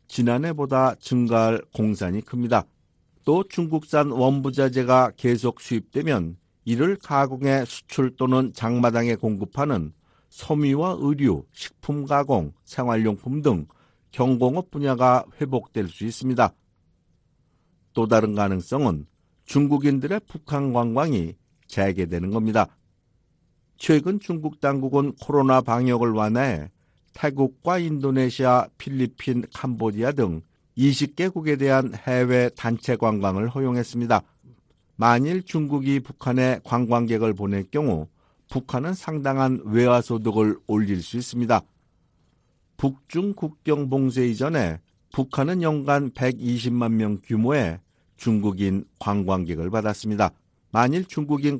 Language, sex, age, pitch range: Korean, male, 50-69, 110-140 Hz